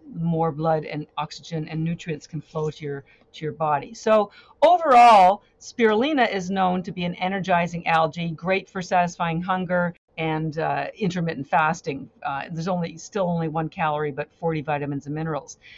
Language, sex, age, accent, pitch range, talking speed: English, female, 50-69, American, 155-205 Hz, 165 wpm